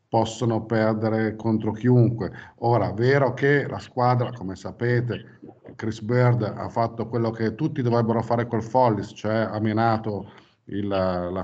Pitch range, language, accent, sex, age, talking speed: 105-125 Hz, Italian, native, male, 50-69, 140 wpm